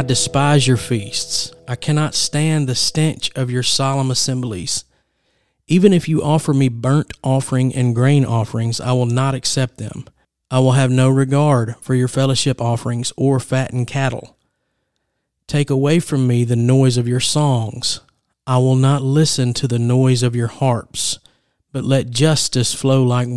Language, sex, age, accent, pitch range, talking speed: English, male, 40-59, American, 120-135 Hz, 165 wpm